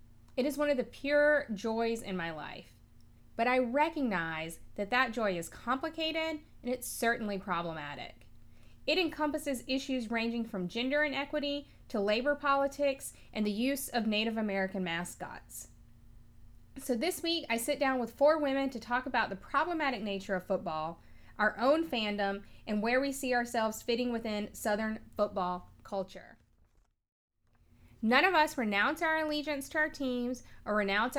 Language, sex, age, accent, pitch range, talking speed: English, female, 20-39, American, 195-275 Hz, 155 wpm